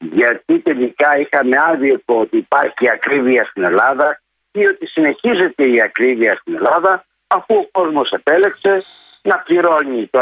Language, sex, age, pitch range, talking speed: Greek, male, 60-79, 160-235 Hz, 140 wpm